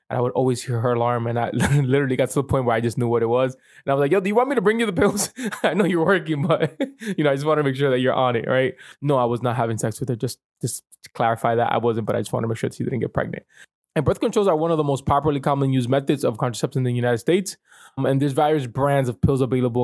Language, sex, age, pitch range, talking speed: English, male, 20-39, 120-150 Hz, 320 wpm